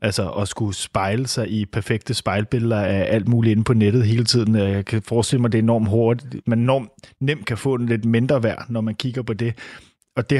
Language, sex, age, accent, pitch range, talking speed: Danish, male, 30-49, native, 110-130 Hz, 230 wpm